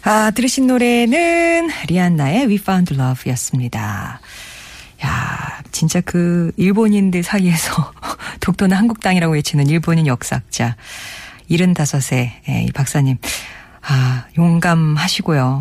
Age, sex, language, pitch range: 40-59, female, Korean, 145-205 Hz